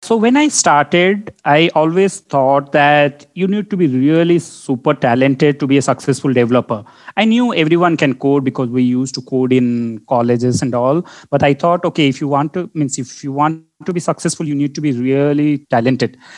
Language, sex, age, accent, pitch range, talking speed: English, male, 30-49, Indian, 130-165 Hz, 200 wpm